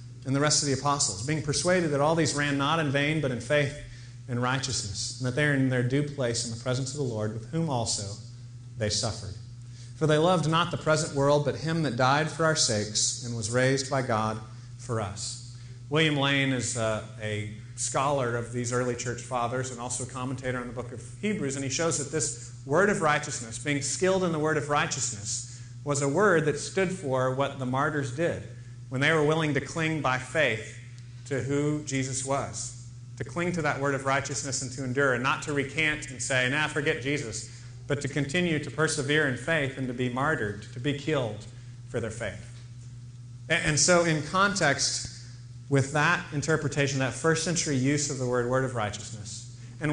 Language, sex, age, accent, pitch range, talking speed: English, male, 40-59, American, 120-150 Hz, 205 wpm